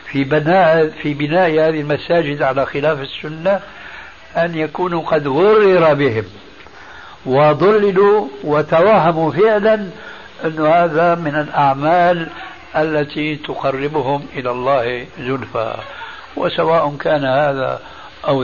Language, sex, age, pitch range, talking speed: Arabic, male, 60-79, 145-175 Hz, 95 wpm